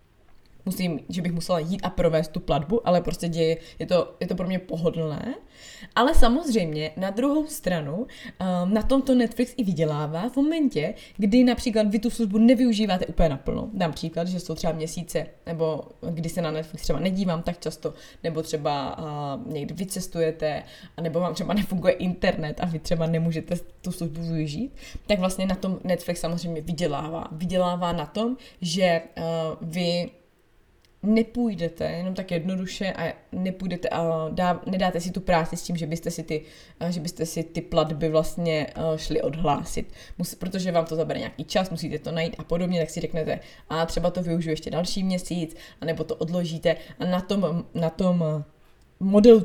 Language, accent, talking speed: Czech, native, 165 wpm